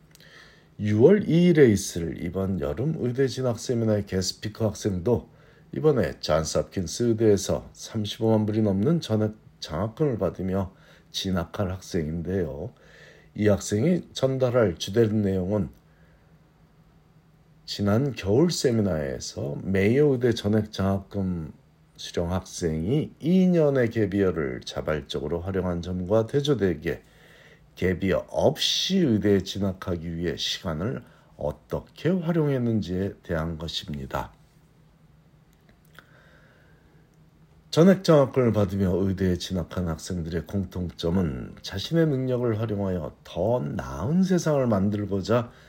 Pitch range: 90-125 Hz